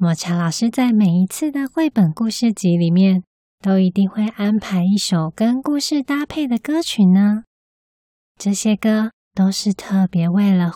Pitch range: 190-245 Hz